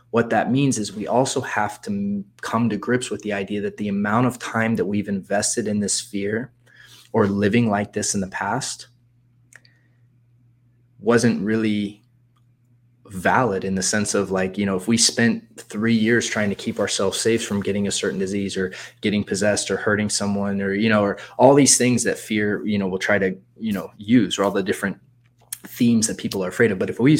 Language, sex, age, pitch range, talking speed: English, male, 20-39, 100-120 Hz, 205 wpm